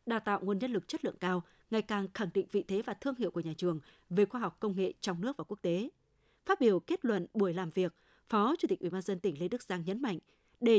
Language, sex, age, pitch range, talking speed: Vietnamese, female, 20-39, 190-245 Hz, 280 wpm